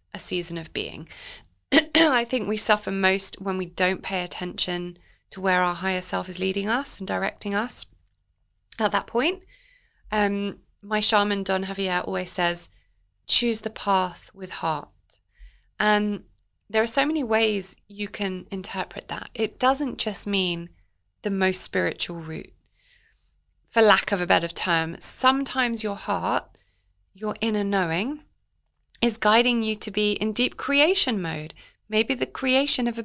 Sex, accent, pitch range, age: female, British, 190-235 Hz, 30-49